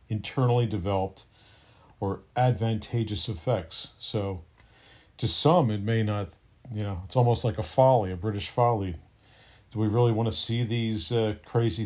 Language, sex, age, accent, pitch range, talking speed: English, male, 50-69, American, 105-120 Hz, 145 wpm